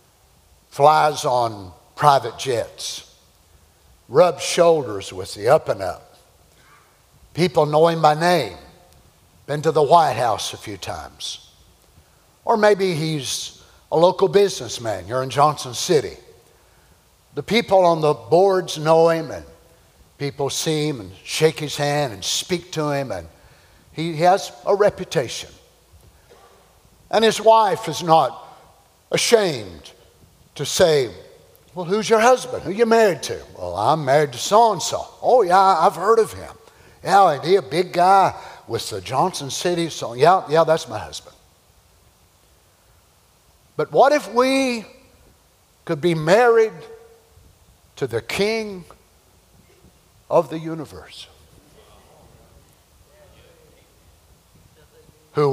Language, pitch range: English, 125-195 Hz